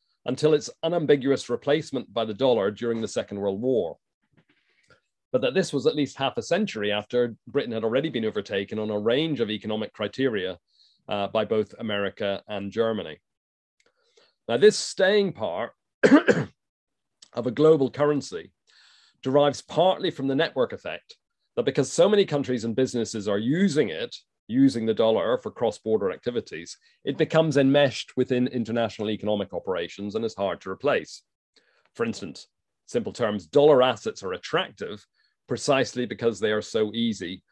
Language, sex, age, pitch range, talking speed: English, male, 40-59, 110-155 Hz, 150 wpm